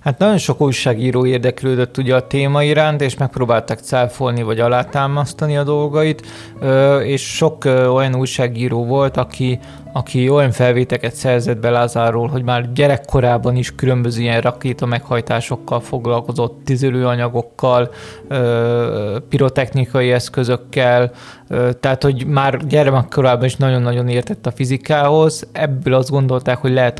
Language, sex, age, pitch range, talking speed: Hungarian, male, 20-39, 120-140 Hz, 120 wpm